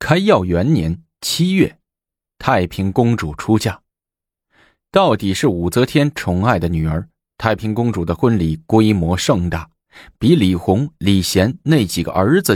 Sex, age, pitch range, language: male, 20-39, 85-125 Hz, Chinese